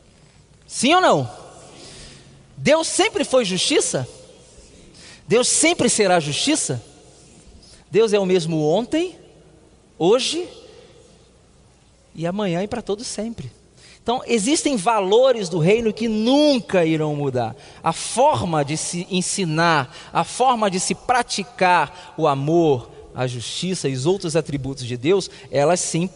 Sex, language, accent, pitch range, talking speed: male, Portuguese, Brazilian, 155-210 Hz, 125 wpm